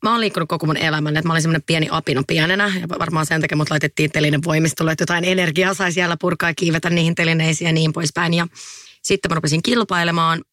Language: English